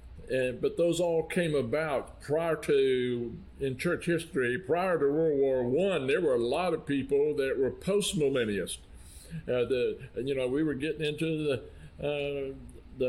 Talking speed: 155 wpm